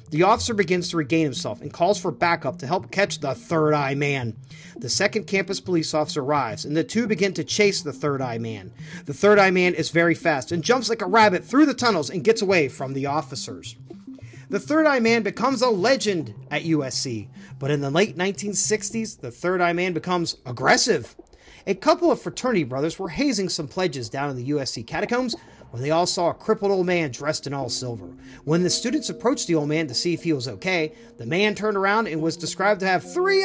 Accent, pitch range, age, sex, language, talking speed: American, 155-235 Hz, 40-59, male, English, 220 wpm